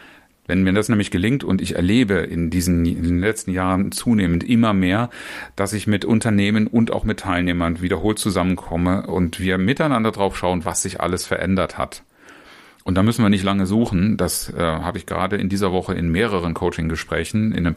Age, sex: 40-59, male